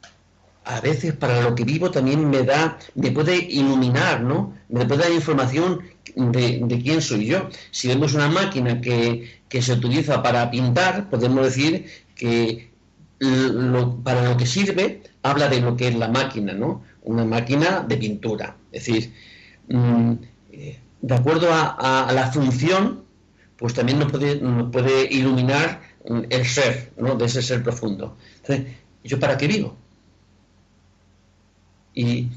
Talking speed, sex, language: 150 wpm, male, Spanish